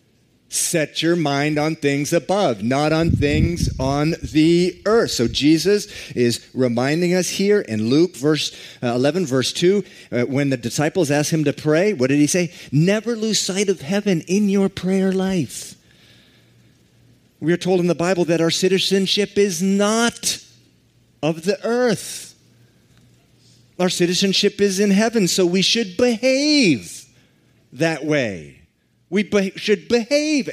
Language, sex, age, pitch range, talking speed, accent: English, male, 40-59, 125-190 Hz, 140 wpm, American